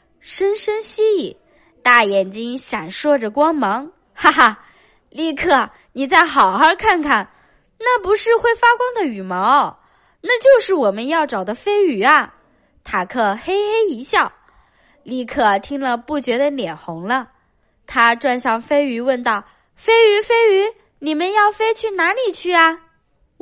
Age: 20-39